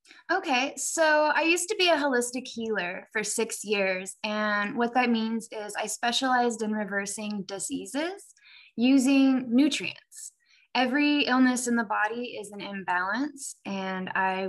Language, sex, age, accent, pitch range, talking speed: English, female, 10-29, American, 195-270 Hz, 140 wpm